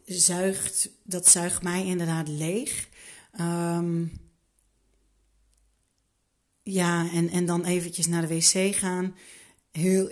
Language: Dutch